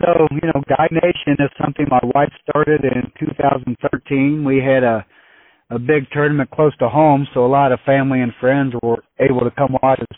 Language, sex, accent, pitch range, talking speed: English, male, American, 125-140 Hz, 200 wpm